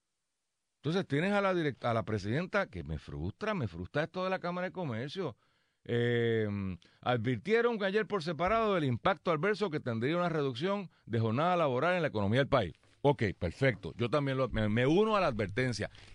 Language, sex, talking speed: Spanish, male, 190 wpm